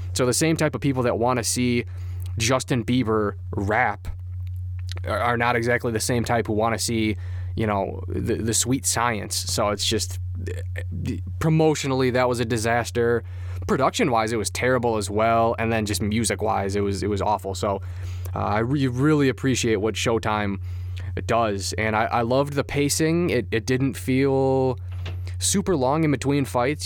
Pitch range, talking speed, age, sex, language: 95-120 Hz, 170 wpm, 20-39, male, English